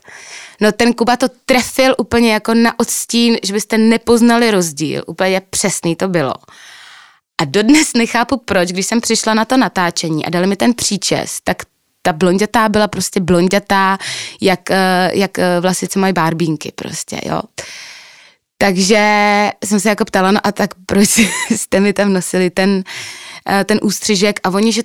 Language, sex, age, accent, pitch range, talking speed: Czech, female, 20-39, native, 180-235 Hz, 155 wpm